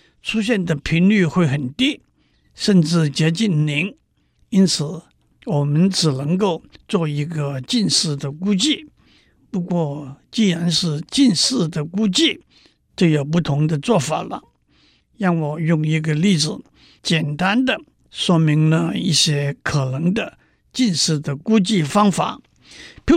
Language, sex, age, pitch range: Chinese, male, 60-79, 155-210 Hz